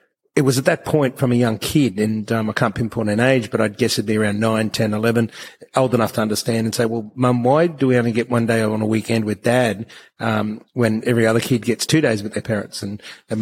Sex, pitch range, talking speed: male, 110-125 Hz, 260 wpm